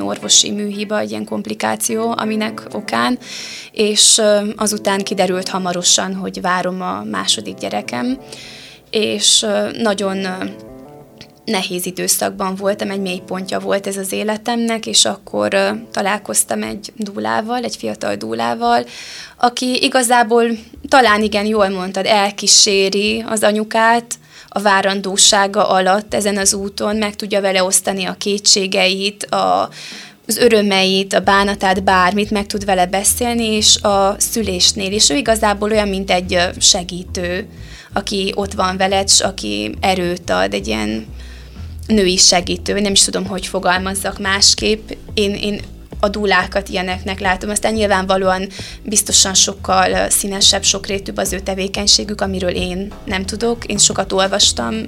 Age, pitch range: 20-39, 180-210 Hz